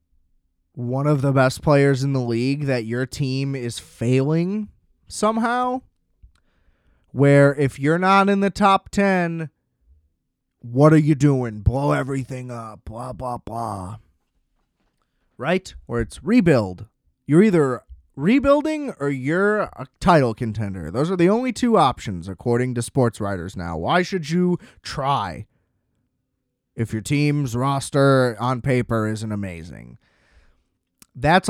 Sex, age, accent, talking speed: male, 20-39, American, 130 wpm